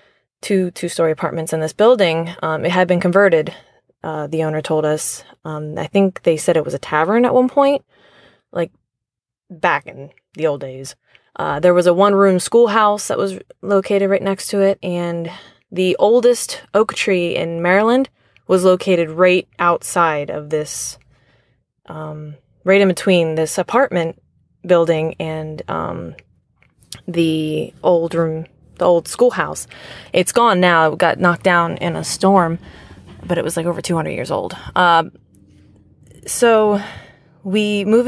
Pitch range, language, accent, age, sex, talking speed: 160-200 Hz, English, American, 20-39, female, 150 wpm